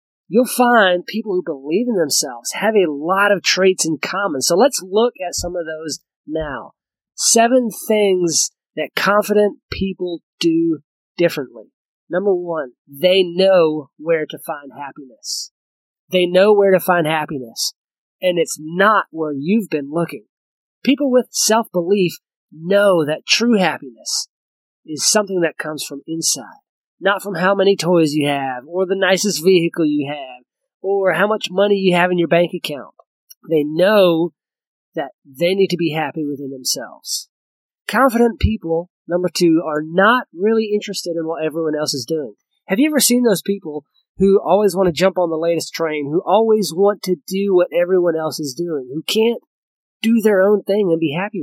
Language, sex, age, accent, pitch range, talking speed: English, male, 30-49, American, 160-200 Hz, 170 wpm